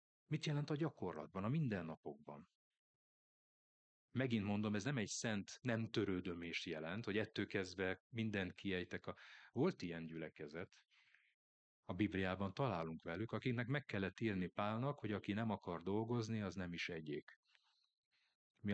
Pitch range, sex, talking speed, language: 90-130 Hz, male, 140 wpm, Hungarian